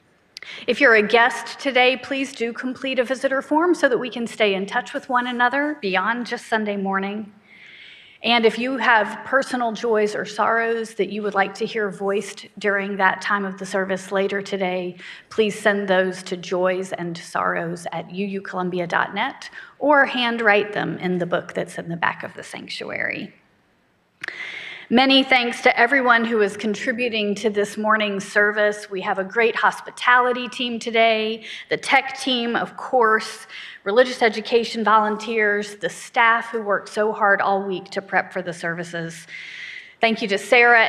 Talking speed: 165 wpm